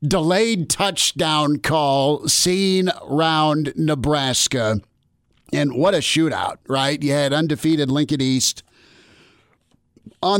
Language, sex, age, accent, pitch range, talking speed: English, male, 50-69, American, 125-155 Hz, 100 wpm